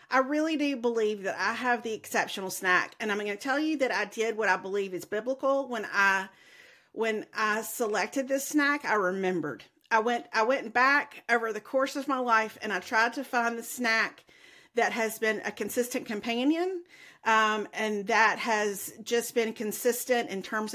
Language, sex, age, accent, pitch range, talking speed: English, female, 40-59, American, 205-260 Hz, 190 wpm